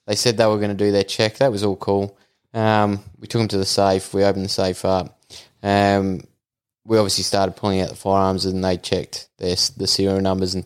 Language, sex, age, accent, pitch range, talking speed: English, male, 20-39, Australian, 95-105 Hz, 225 wpm